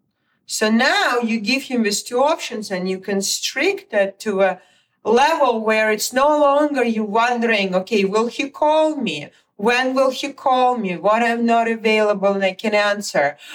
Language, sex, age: English, female, 40-59